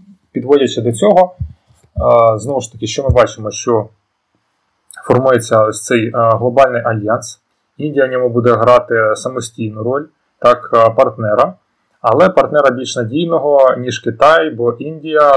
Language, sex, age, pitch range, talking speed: Ukrainian, male, 30-49, 115-135 Hz, 125 wpm